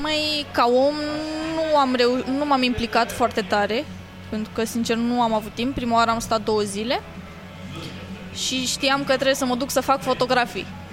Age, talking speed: 20-39, 185 wpm